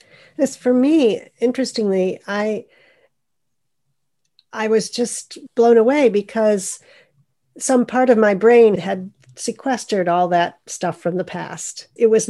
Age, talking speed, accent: 40-59, 125 wpm, American